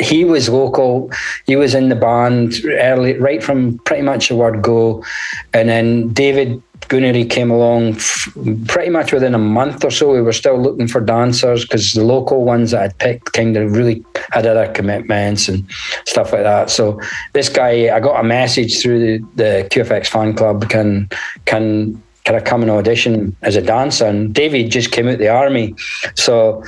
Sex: male